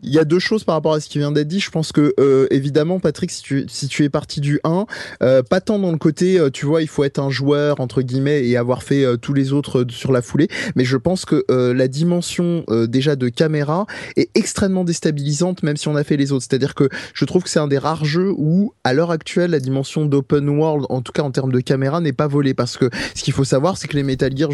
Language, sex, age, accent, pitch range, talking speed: French, male, 20-39, French, 130-160 Hz, 285 wpm